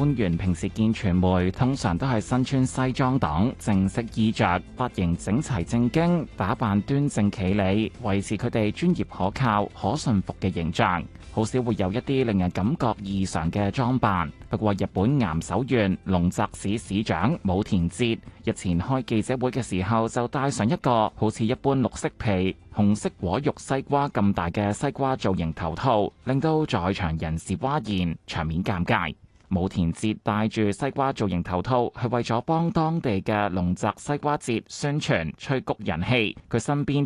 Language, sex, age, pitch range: Chinese, male, 20-39, 95-125 Hz